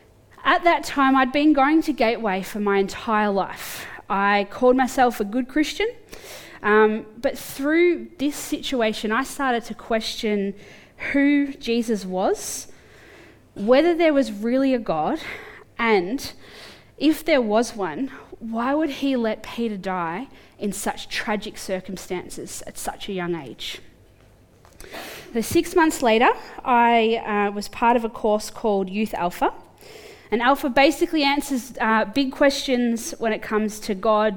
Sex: female